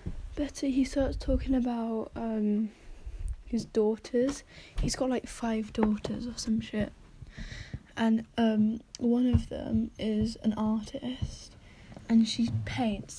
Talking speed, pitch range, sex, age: 120 wpm, 205-230 Hz, female, 10-29